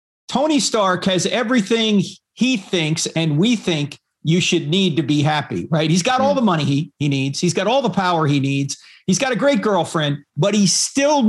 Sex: male